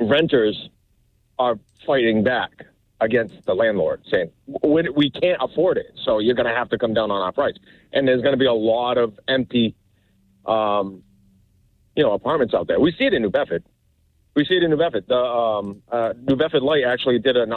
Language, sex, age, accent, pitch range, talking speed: English, male, 40-59, American, 115-140 Hz, 200 wpm